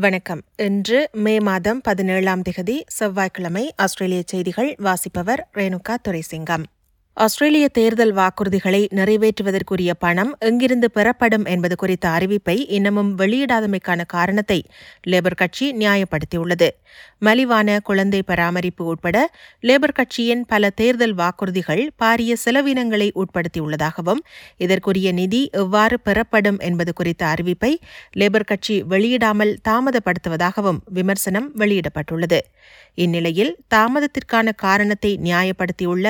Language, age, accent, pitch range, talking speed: Tamil, 30-49, native, 170-220 Hz, 65 wpm